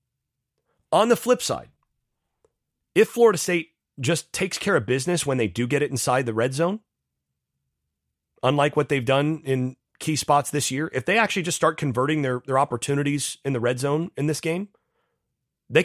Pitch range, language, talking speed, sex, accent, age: 125-170 Hz, English, 180 wpm, male, American, 30-49